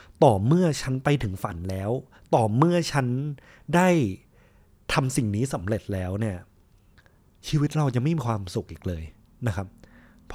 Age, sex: 30-49, male